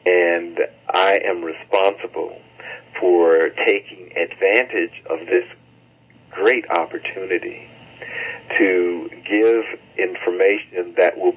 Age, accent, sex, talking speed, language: 50-69, American, male, 85 wpm, English